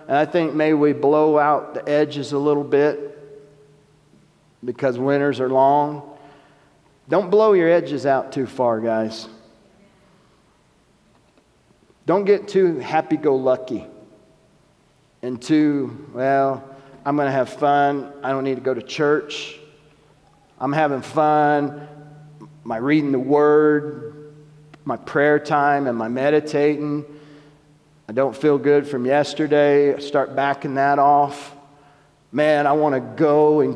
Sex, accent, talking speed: male, American, 130 wpm